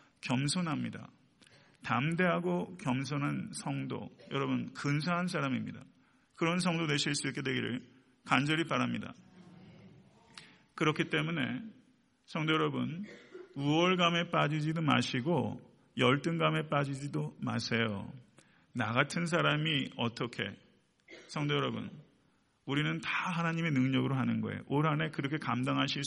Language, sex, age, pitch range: Korean, male, 40-59, 130-165 Hz